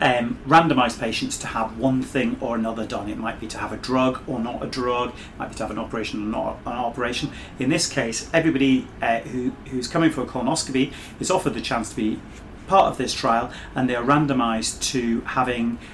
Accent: British